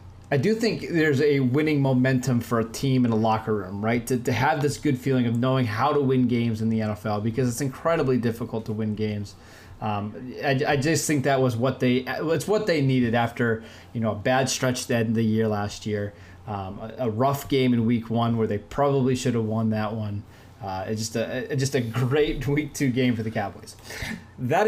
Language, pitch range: English, 115-145 Hz